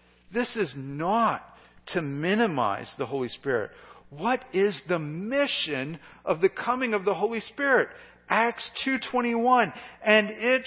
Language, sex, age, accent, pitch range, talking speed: English, male, 50-69, American, 140-225 Hz, 130 wpm